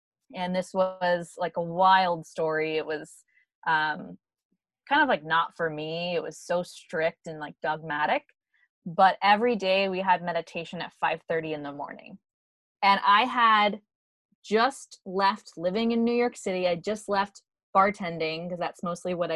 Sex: female